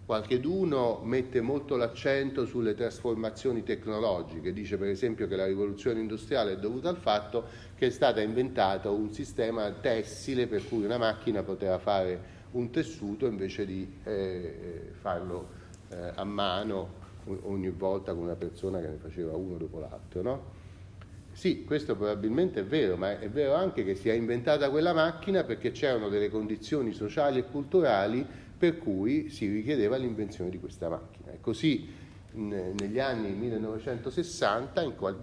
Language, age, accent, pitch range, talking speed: Italian, 40-59, native, 95-125 Hz, 150 wpm